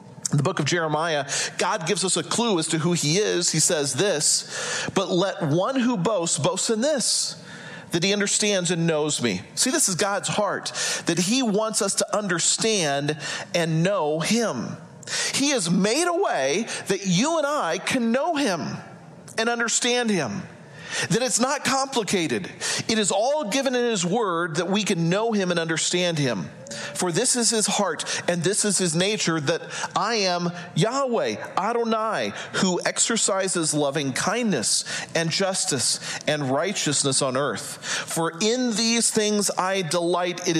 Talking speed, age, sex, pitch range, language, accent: 165 wpm, 40-59, male, 165-220 Hz, English, American